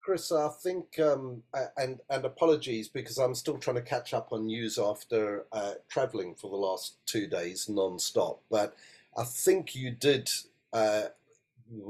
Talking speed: 155 wpm